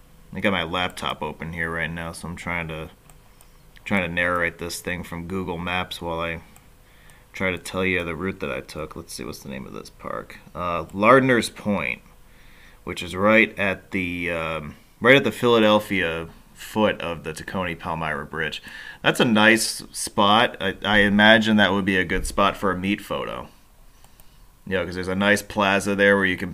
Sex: male